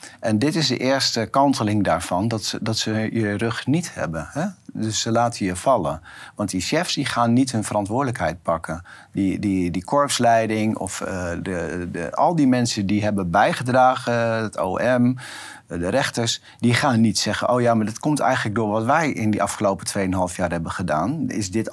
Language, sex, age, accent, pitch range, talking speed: Dutch, male, 50-69, Dutch, 95-120 Hz, 175 wpm